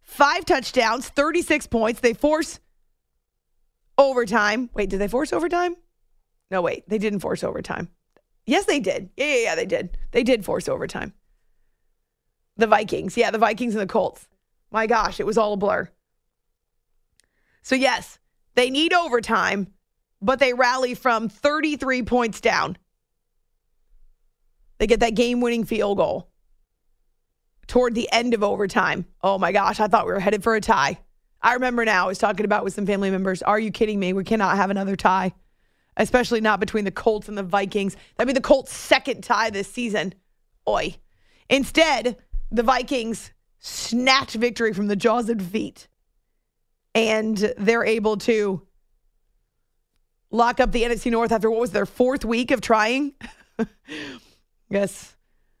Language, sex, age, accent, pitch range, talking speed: English, female, 30-49, American, 210-250 Hz, 155 wpm